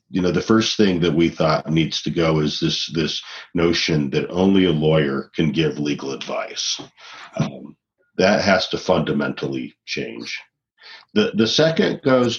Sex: male